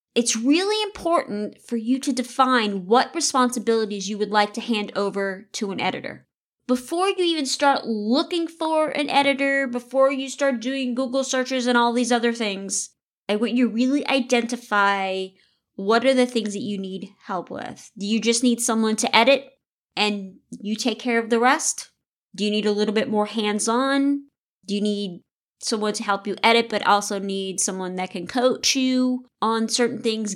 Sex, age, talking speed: female, 30-49, 180 wpm